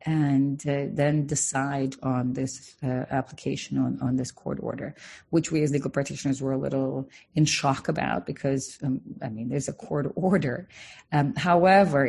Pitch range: 135-155 Hz